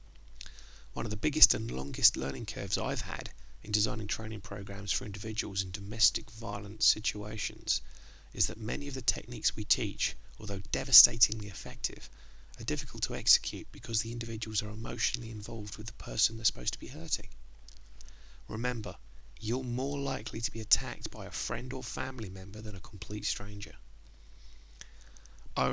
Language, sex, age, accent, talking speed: English, male, 30-49, British, 155 wpm